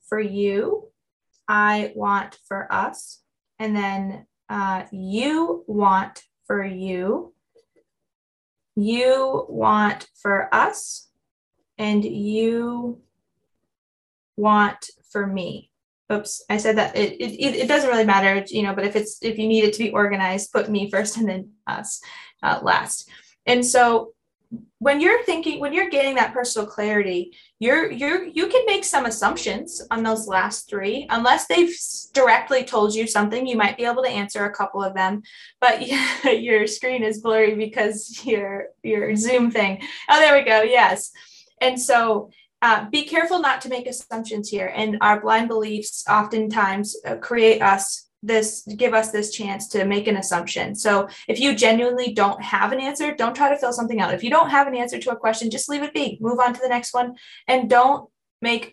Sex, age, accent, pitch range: female, 20-39, American, 205-250 Hz